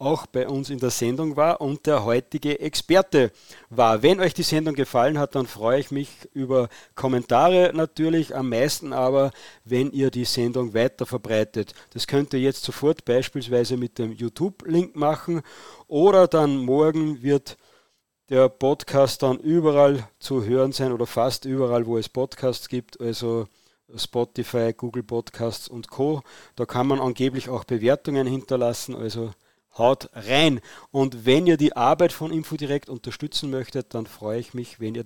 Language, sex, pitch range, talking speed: German, male, 120-145 Hz, 160 wpm